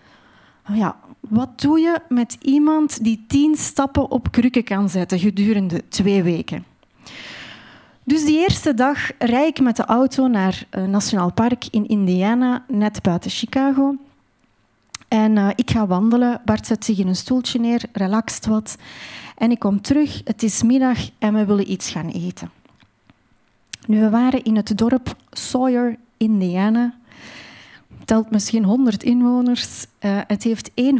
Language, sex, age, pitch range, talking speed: Dutch, female, 30-49, 205-260 Hz, 150 wpm